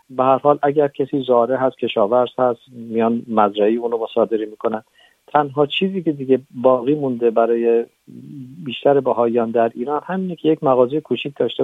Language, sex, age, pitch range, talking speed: Persian, male, 50-69, 115-140 Hz, 160 wpm